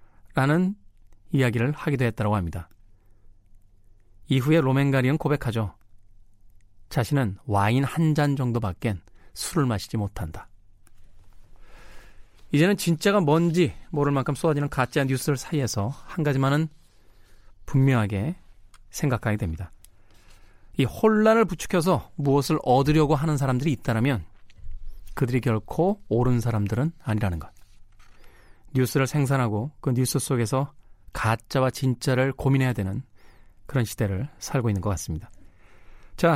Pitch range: 100-150 Hz